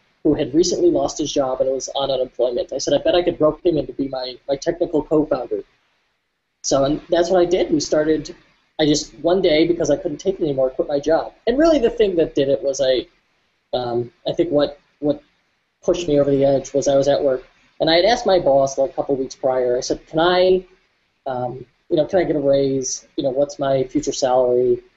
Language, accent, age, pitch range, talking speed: English, American, 20-39, 140-185 Hz, 240 wpm